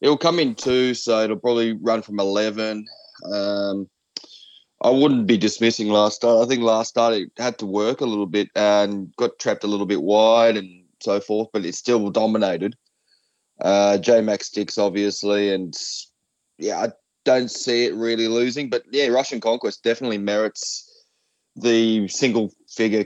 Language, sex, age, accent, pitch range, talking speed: English, male, 20-39, Australian, 100-115 Hz, 165 wpm